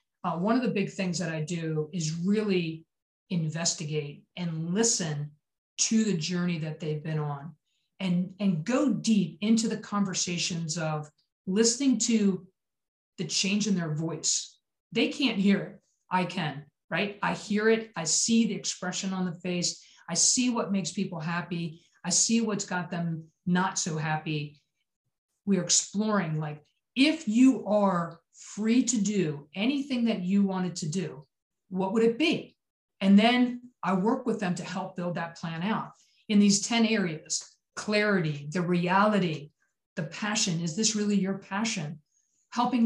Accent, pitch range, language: American, 165-205 Hz, English